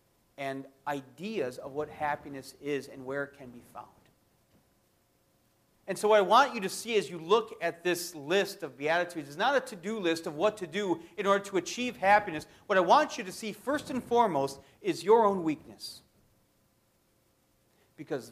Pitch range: 150-210 Hz